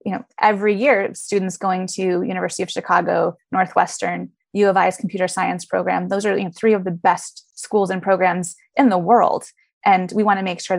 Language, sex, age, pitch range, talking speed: English, female, 20-39, 185-225 Hz, 205 wpm